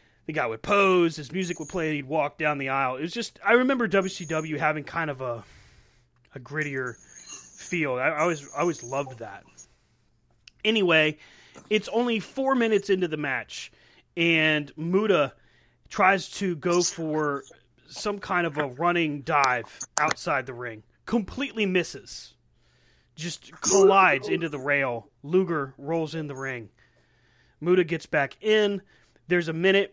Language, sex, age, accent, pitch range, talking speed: English, male, 30-49, American, 145-190 Hz, 150 wpm